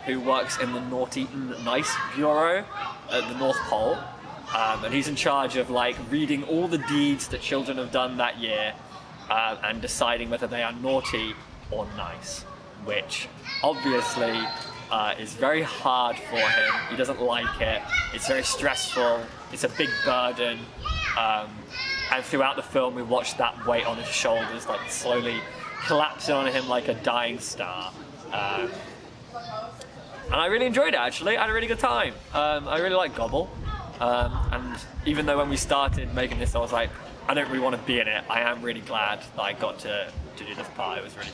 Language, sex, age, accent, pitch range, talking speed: English, male, 20-39, British, 120-175 Hz, 190 wpm